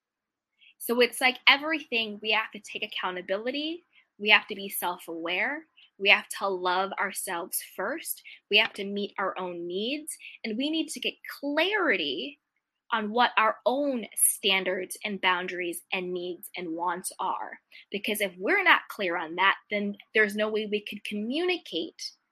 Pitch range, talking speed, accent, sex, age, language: 195-265 Hz, 160 wpm, American, female, 20-39, English